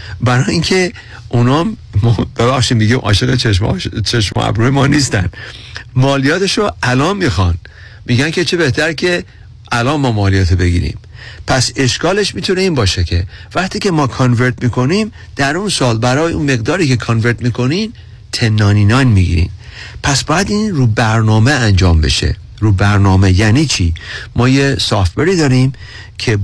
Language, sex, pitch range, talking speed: Persian, male, 95-130 Hz, 140 wpm